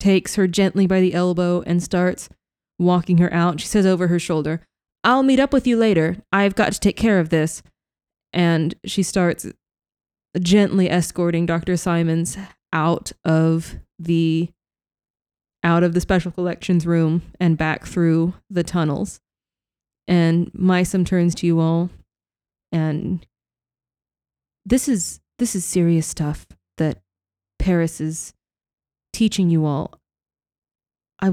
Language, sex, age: English, female, 20-39